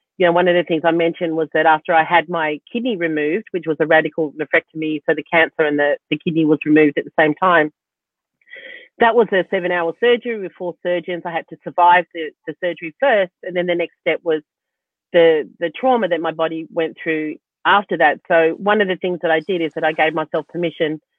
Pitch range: 160-180 Hz